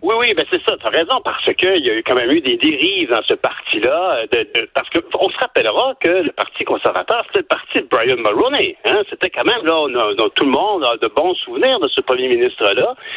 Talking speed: 250 wpm